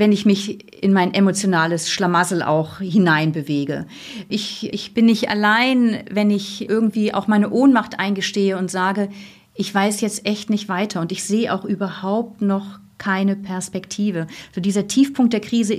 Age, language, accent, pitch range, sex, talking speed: 40-59, German, German, 190-220 Hz, female, 160 wpm